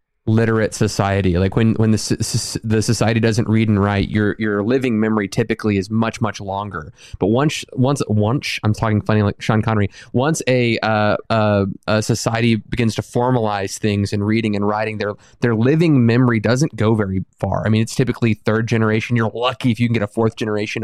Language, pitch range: English, 105-125 Hz